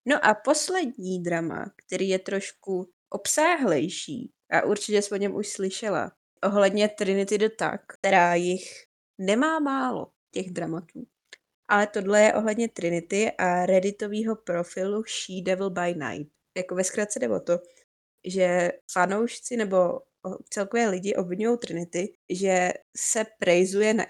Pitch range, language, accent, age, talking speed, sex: 180-210 Hz, Czech, native, 20-39, 130 wpm, female